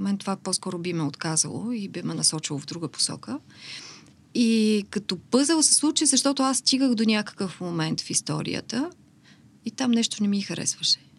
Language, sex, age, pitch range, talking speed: Bulgarian, female, 30-49, 180-235 Hz, 170 wpm